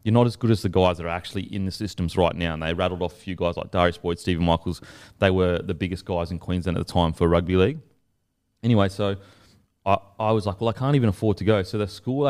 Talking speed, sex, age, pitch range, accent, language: 275 wpm, male, 30-49, 95-110 Hz, Australian, English